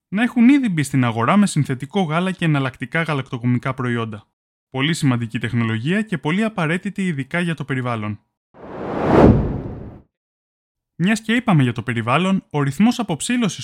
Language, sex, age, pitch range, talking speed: Greek, male, 20-39, 125-190 Hz, 140 wpm